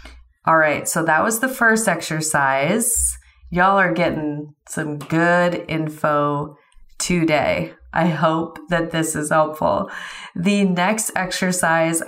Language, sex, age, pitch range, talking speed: English, female, 30-49, 155-185 Hz, 120 wpm